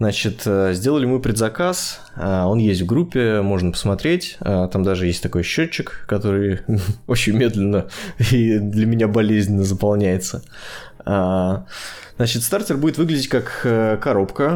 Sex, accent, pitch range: male, native, 95-115 Hz